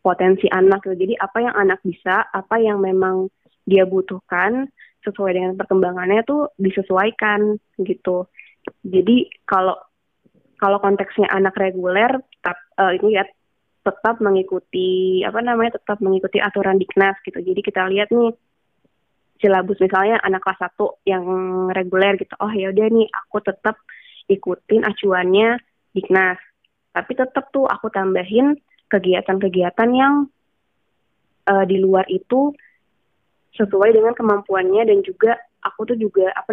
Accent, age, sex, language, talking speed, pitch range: native, 20-39, female, Indonesian, 130 wpm, 190-225 Hz